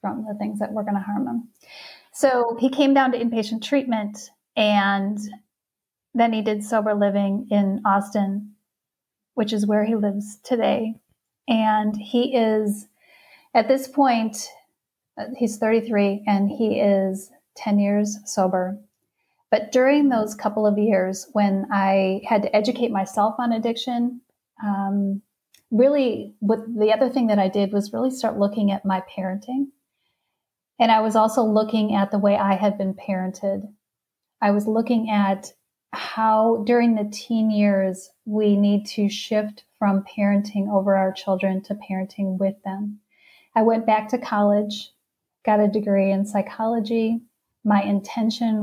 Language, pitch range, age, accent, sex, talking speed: English, 200-225 Hz, 30-49, American, female, 145 wpm